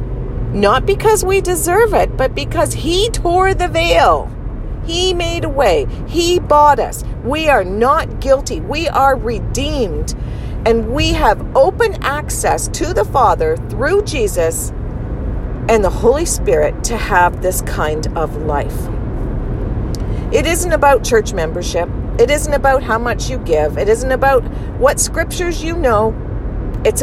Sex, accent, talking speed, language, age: female, American, 145 wpm, English, 40-59